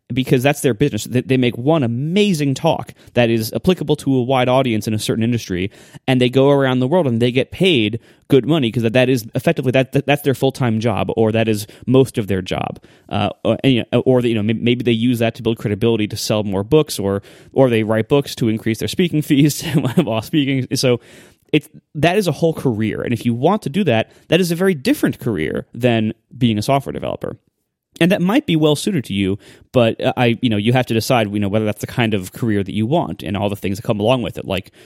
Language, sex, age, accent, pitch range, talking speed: English, male, 30-49, American, 110-145 Hz, 240 wpm